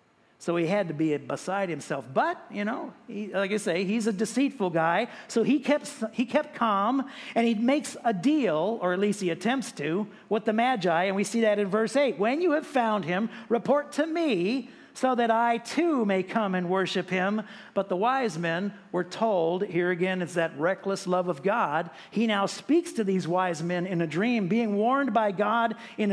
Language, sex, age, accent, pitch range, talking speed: English, male, 50-69, American, 180-235 Hz, 205 wpm